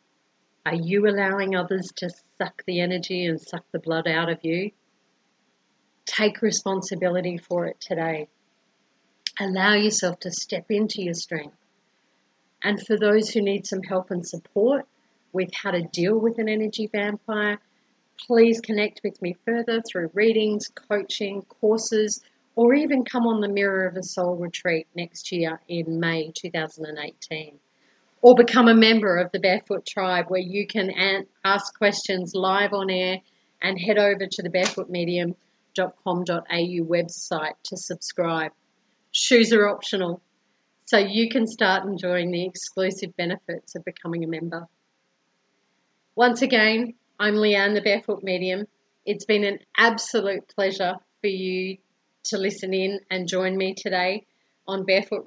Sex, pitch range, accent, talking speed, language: female, 180-210 Hz, Australian, 140 wpm, English